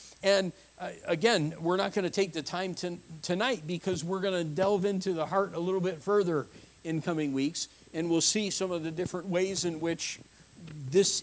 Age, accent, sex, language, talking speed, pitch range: 50-69, American, male, English, 200 wpm, 130-180 Hz